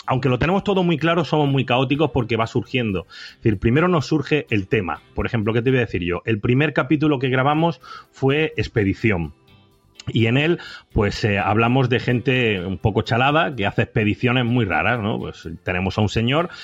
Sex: male